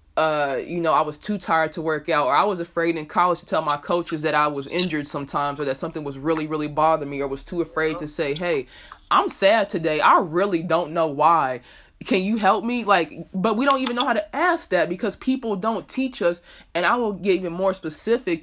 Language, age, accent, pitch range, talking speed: English, 20-39, American, 165-215 Hz, 240 wpm